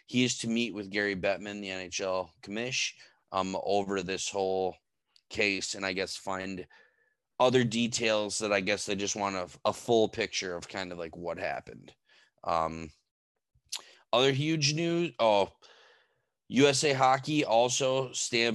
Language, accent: English, American